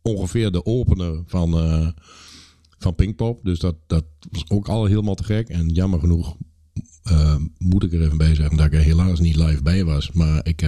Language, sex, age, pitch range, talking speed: Dutch, male, 50-69, 80-90 Hz, 190 wpm